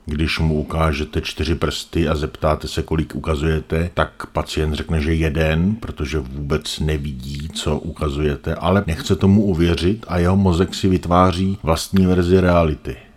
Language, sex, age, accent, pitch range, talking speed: Czech, male, 50-69, native, 80-90 Hz, 145 wpm